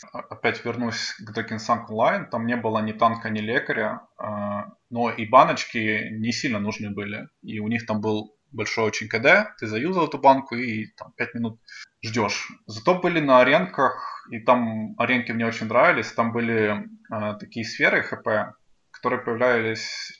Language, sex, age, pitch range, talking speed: Russian, male, 20-39, 110-120 Hz, 155 wpm